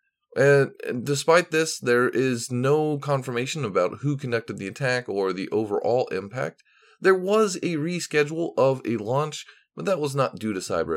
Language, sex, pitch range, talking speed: English, male, 115-155 Hz, 165 wpm